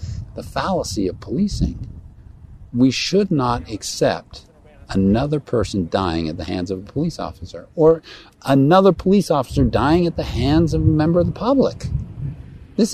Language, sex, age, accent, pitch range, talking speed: English, male, 50-69, American, 105-160 Hz, 155 wpm